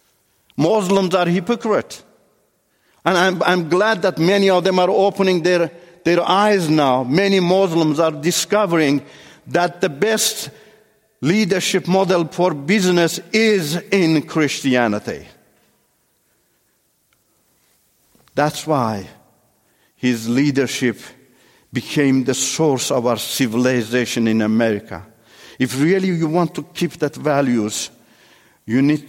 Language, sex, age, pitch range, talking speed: English, male, 50-69, 120-165 Hz, 110 wpm